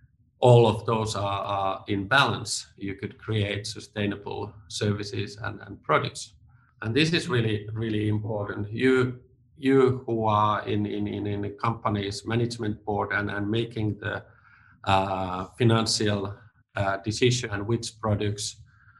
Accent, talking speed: Finnish, 140 wpm